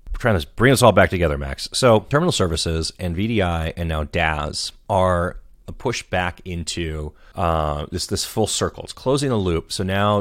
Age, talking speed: 30-49, 190 wpm